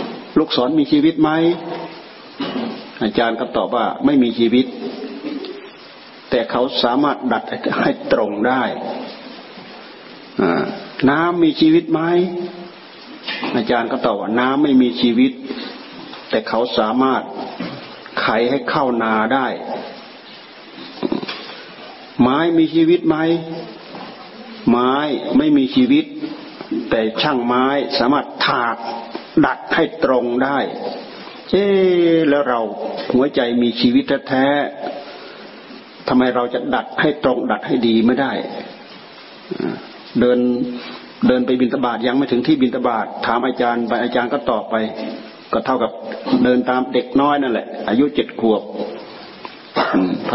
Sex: male